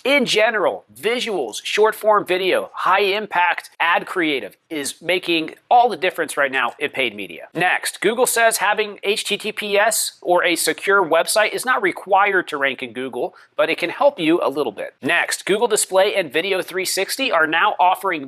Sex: male